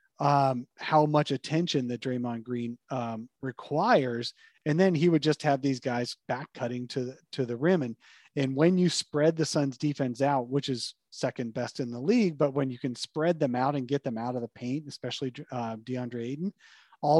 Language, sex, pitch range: English, male, 125-150 Hz